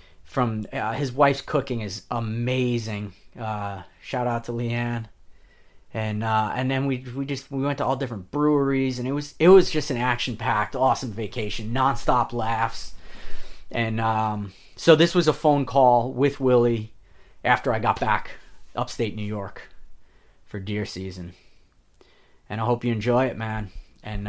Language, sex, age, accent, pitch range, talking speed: English, male, 30-49, American, 105-130 Hz, 160 wpm